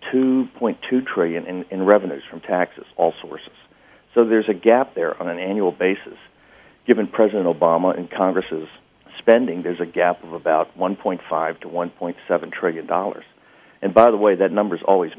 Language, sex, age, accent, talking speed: English, male, 50-69, American, 155 wpm